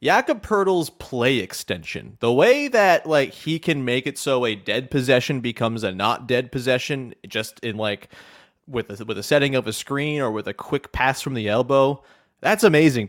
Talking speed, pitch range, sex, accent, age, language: 185 wpm, 115-150 Hz, male, American, 30-49, English